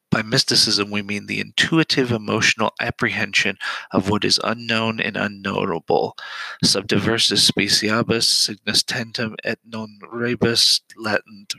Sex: male